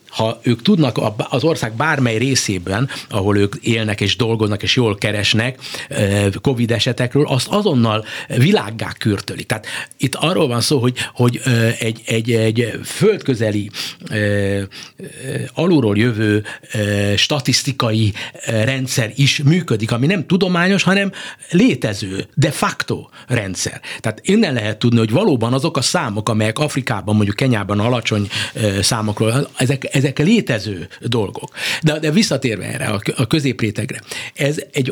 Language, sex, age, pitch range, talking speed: Hungarian, male, 60-79, 110-150 Hz, 125 wpm